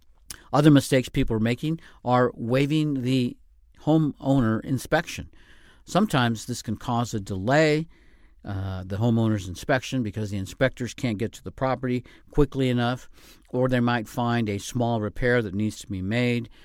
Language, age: English, 50-69